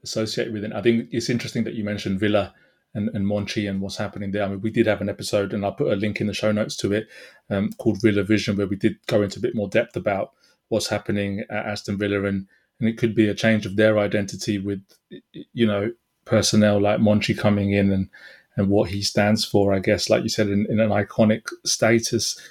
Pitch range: 105-115 Hz